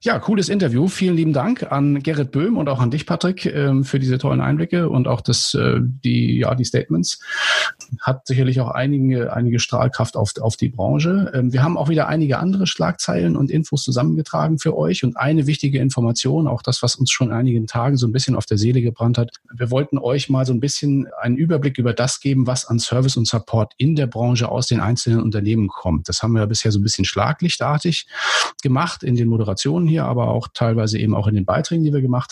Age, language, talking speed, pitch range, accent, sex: 40-59, German, 215 wpm, 115-140 Hz, German, male